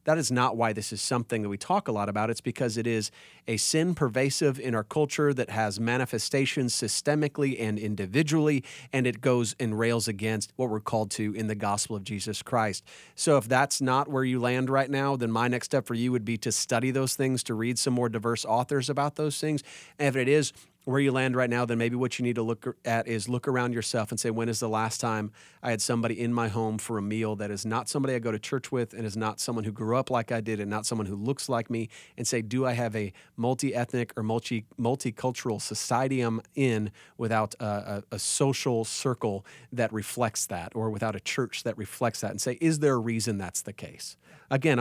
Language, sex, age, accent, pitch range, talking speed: English, male, 30-49, American, 110-130 Hz, 235 wpm